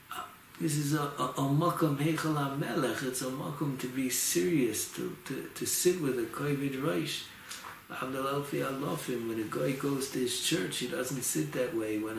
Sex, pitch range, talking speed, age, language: male, 120-155 Hz, 180 wpm, 60-79, English